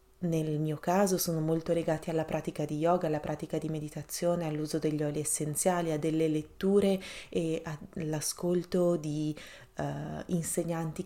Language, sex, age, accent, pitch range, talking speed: Italian, female, 30-49, native, 155-180 Hz, 135 wpm